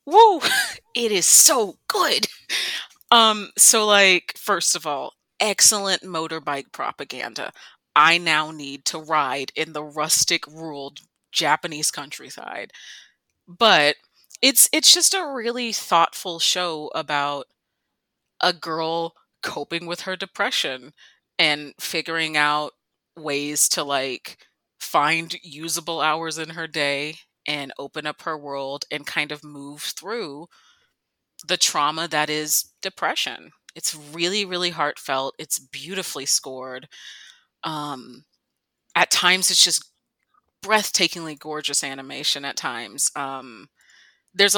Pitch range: 145-180 Hz